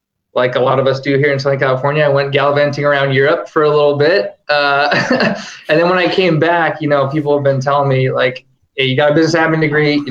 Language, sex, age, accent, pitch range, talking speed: English, male, 20-39, American, 130-145 Hz, 250 wpm